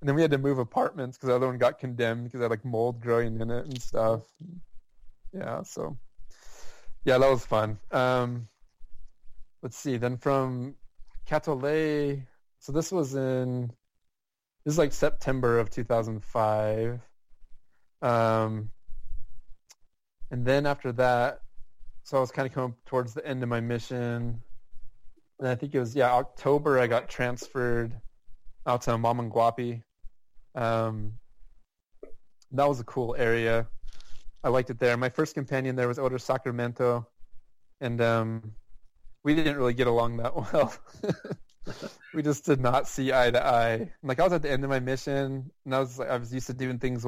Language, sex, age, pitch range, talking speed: English, male, 20-39, 115-130 Hz, 165 wpm